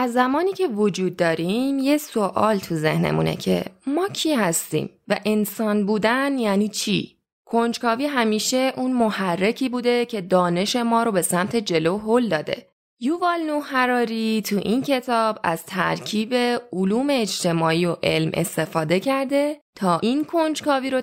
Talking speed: 140 wpm